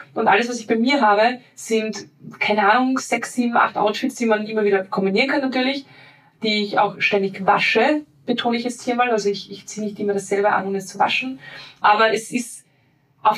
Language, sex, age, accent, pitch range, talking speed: German, female, 20-39, German, 200-235 Hz, 210 wpm